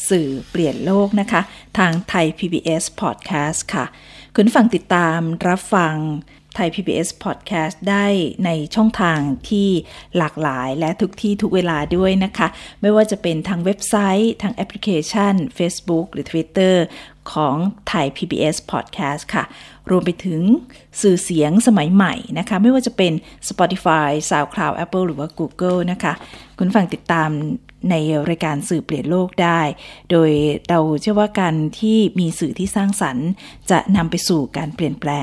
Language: Thai